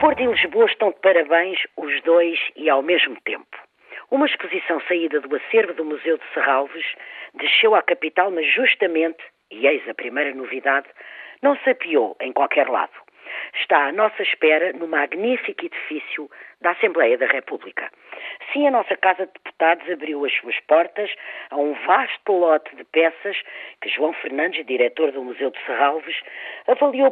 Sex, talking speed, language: female, 160 wpm, Portuguese